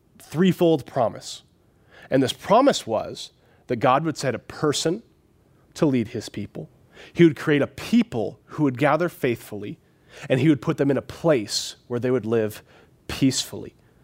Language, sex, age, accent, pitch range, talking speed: English, male, 30-49, American, 135-180 Hz, 160 wpm